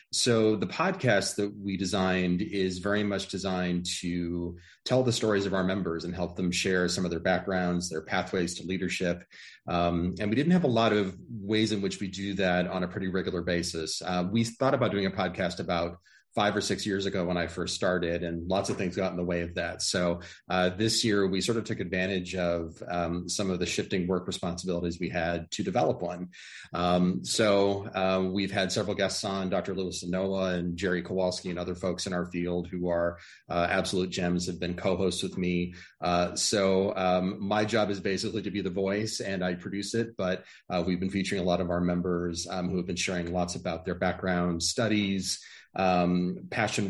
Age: 30-49